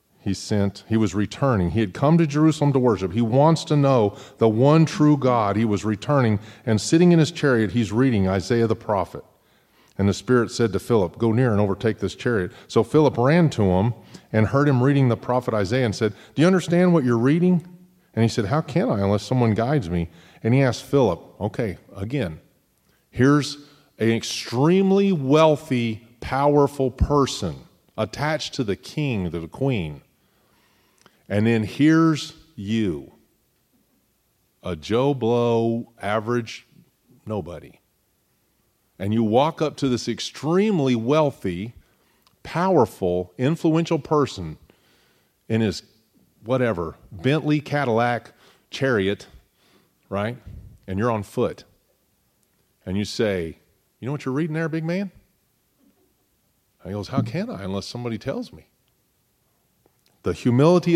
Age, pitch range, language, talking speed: 40-59, 105-145 Hz, English, 145 wpm